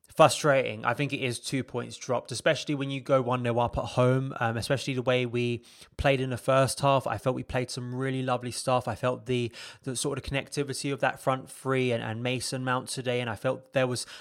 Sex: male